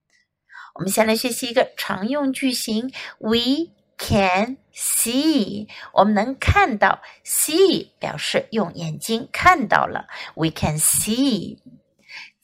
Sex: female